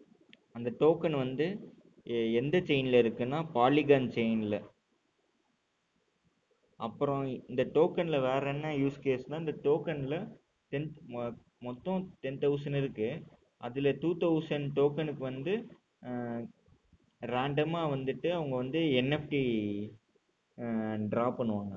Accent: native